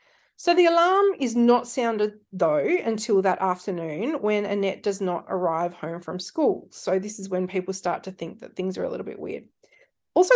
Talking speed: 195 wpm